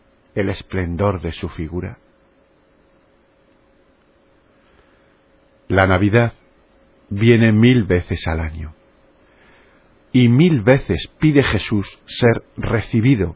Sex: male